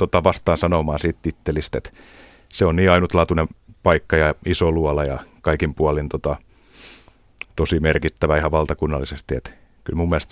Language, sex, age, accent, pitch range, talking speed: Finnish, male, 30-49, native, 75-90 Hz, 150 wpm